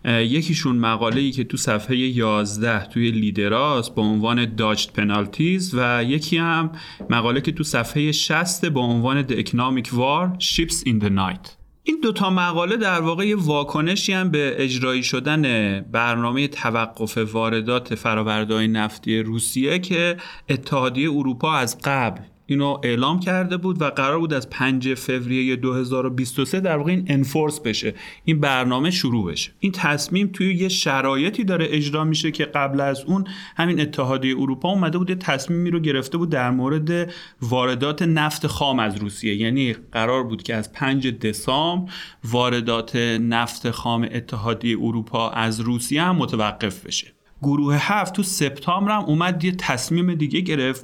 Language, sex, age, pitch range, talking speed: Persian, male, 30-49, 120-165 Hz, 145 wpm